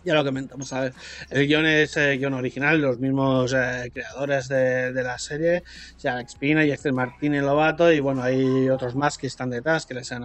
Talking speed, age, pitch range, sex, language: 220 wpm, 30-49, 130-160 Hz, male, Spanish